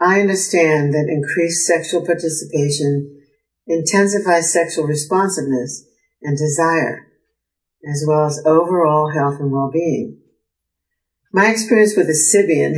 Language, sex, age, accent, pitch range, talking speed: English, female, 60-79, American, 145-165 Hz, 110 wpm